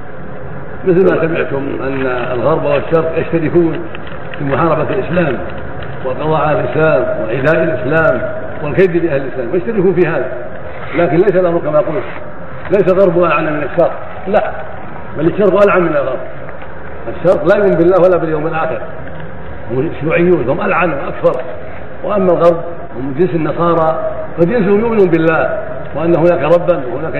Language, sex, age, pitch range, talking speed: Arabic, male, 60-79, 150-180 Hz, 130 wpm